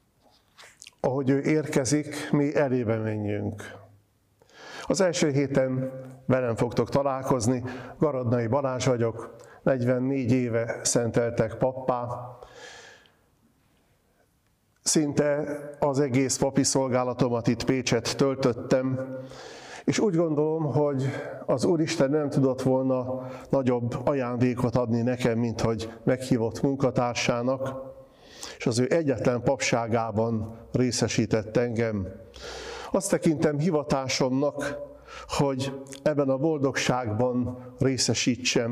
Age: 50-69